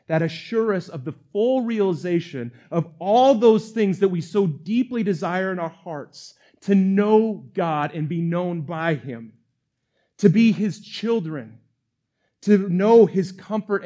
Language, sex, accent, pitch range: English, male, American, 130-185 Hz